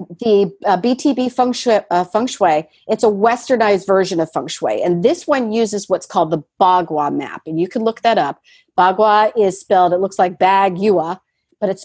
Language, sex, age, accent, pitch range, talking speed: English, female, 40-59, American, 180-245 Hz, 185 wpm